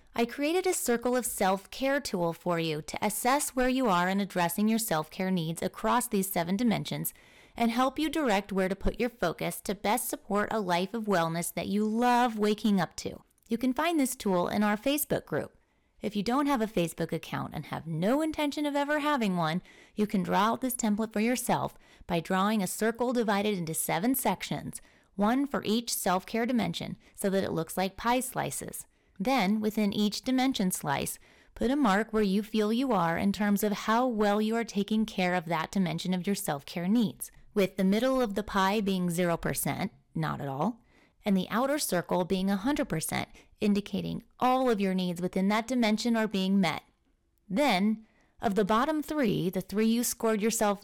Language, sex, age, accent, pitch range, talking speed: English, female, 30-49, American, 190-240 Hz, 195 wpm